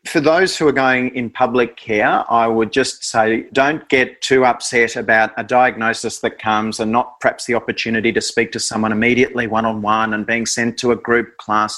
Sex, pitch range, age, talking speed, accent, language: male, 110-125 Hz, 30-49, 200 wpm, Australian, English